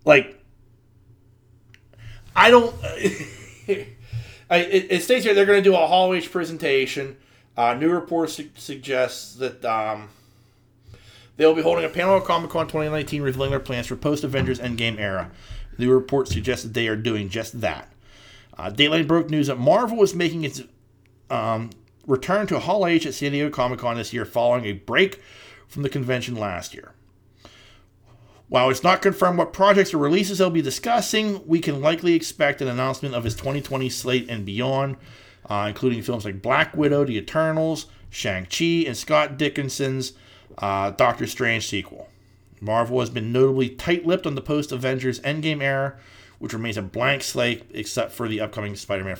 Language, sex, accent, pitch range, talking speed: English, male, American, 110-150 Hz, 160 wpm